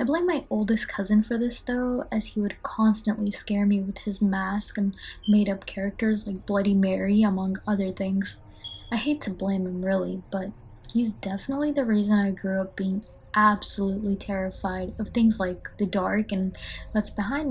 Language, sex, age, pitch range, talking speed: English, female, 20-39, 190-220 Hz, 180 wpm